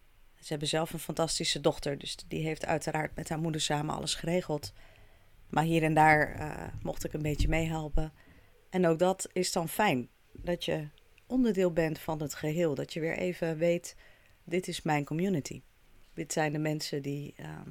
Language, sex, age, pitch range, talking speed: Dutch, female, 30-49, 140-170 Hz, 185 wpm